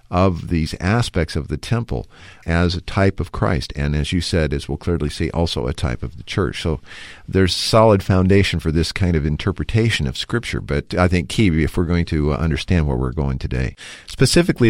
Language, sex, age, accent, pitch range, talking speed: English, male, 50-69, American, 75-95 Hz, 205 wpm